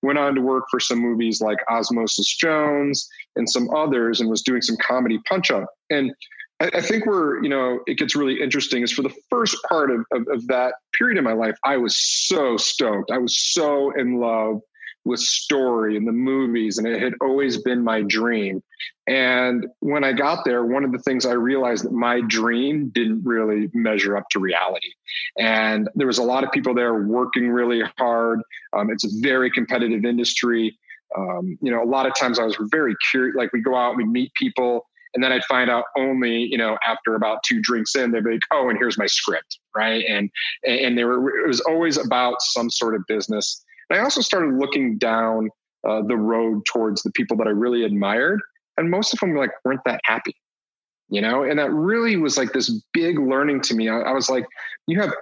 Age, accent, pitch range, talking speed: 30-49, American, 115-135 Hz, 215 wpm